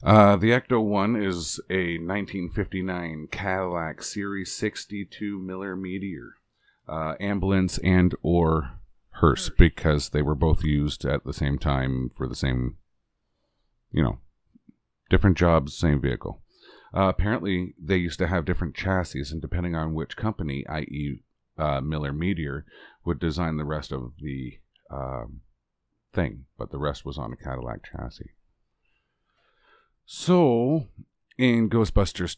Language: English